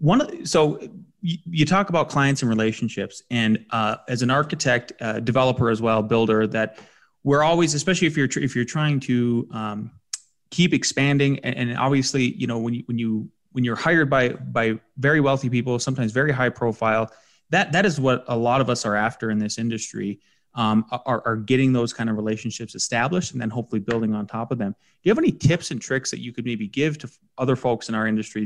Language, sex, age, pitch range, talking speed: English, male, 30-49, 115-150 Hz, 220 wpm